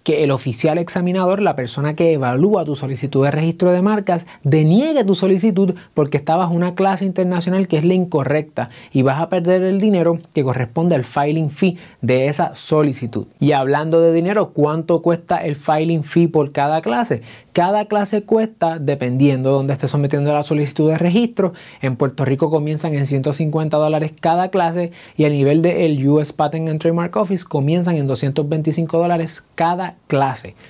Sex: male